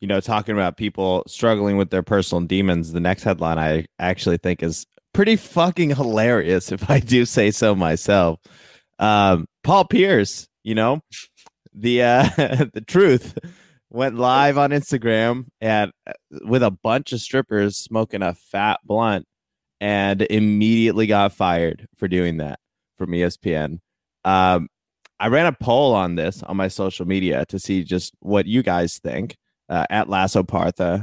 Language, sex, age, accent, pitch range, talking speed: English, male, 20-39, American, 90-115 Hz, 155 wpm